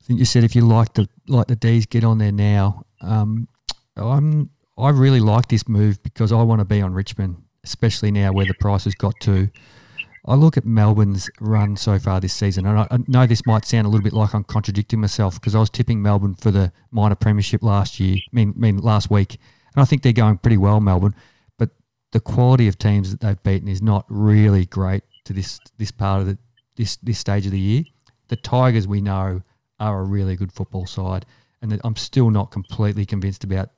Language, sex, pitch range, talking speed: English, male, 100-115 Hz, 220 wpm